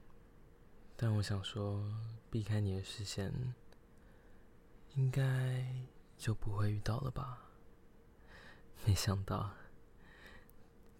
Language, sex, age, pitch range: Chinese, male, 20-39, 100-120 Hz